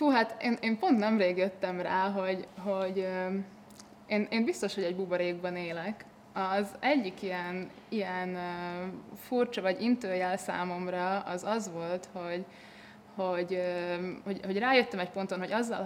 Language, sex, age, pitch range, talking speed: Hungarian, female, 20-39, 180-210 Hz, 140 wpm